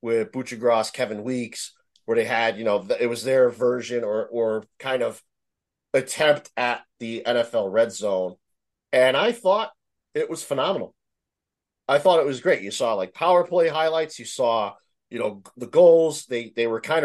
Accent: American